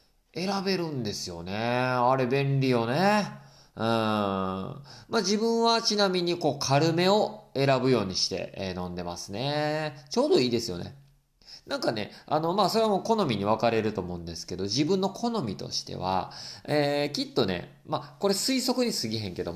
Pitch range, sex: 105-175 Hz, male